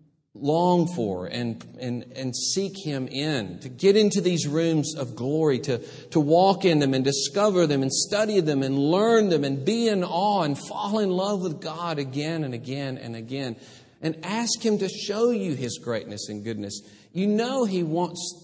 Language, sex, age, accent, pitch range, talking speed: English, male, 40-59, American, 125-175 Hz, 190 wpm